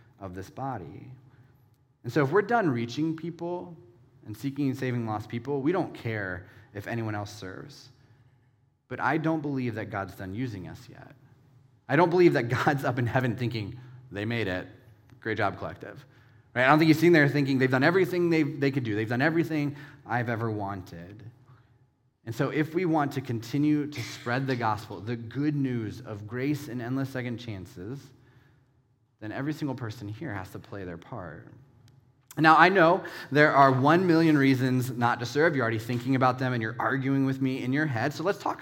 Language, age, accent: English, 30-49, American